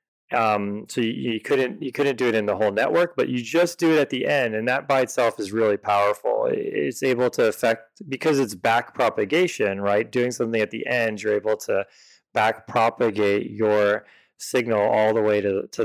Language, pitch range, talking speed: English, 105-130 Hz, 205 wpm